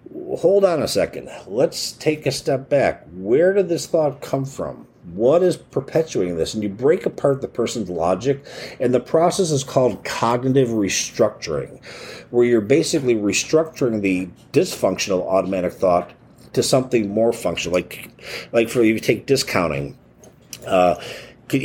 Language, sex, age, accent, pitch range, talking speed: English, male, 50-69, American, 110-150 Hz, 145 wpm